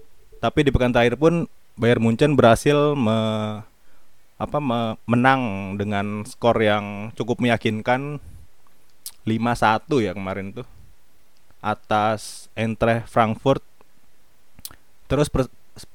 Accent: native